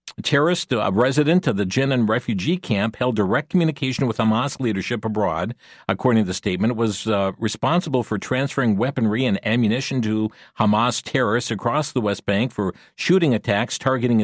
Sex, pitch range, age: male, 115-160 Hz, 50-69